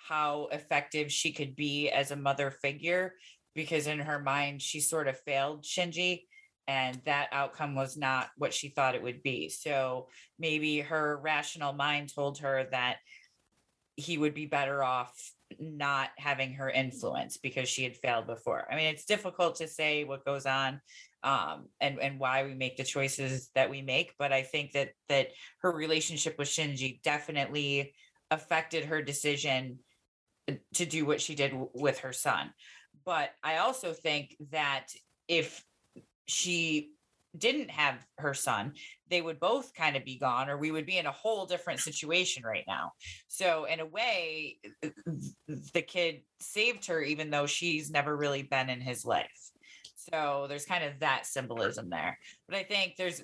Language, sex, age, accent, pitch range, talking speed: English, female, 30-49, American, 135-160 Hz, 170 wpm